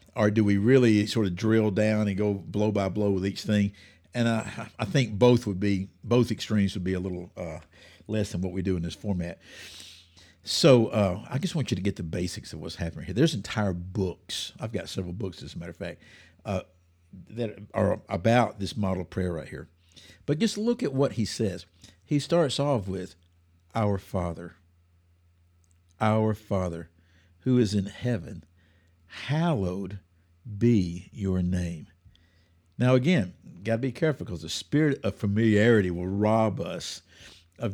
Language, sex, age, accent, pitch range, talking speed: English, male, 60-79, American, 85-115 Hz, 180 wpm